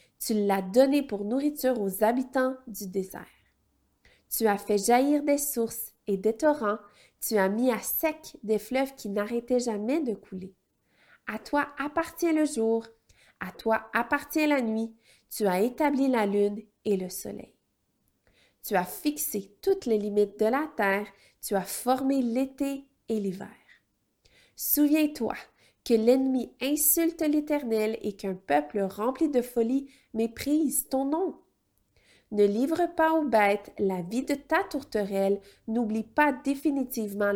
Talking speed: 145 wpm